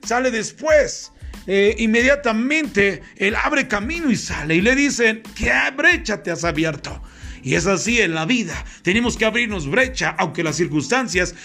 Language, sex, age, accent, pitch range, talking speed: Spanish, male, 40-59, Mexican, 180-240 Hz, 155 wpm